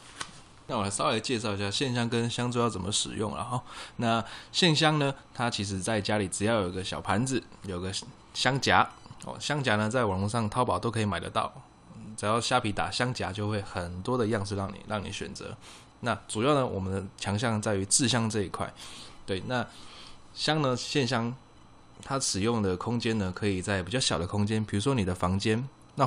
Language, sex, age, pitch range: Chinese, male, 20-39, 100-120 Hz